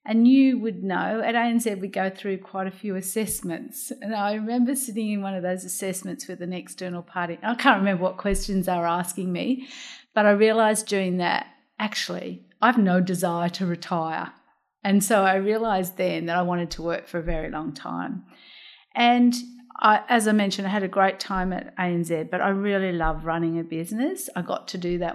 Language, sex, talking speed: English, female, 200 wpm